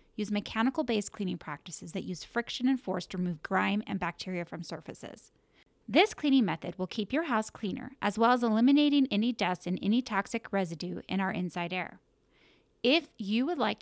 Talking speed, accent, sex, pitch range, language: 180 wpm, American, female, 180-240 Hz, English